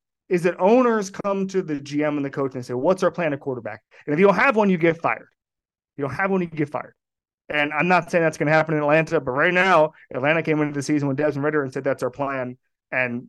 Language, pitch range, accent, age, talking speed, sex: English, 130-165 Hz, American, 30-49, 275 wpm, male